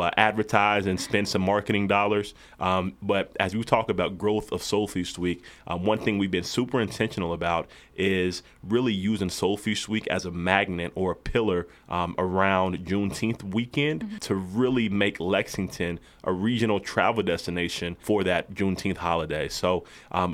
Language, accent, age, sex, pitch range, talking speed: English, American, 30-49, male, 90-105 Hz, 165 wpm